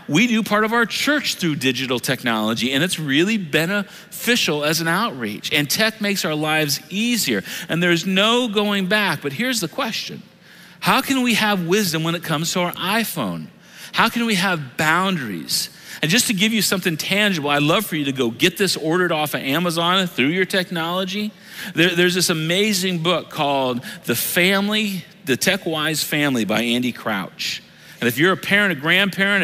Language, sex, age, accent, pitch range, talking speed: English, male, 40-59, American, 150-200 Hz, 185 wpm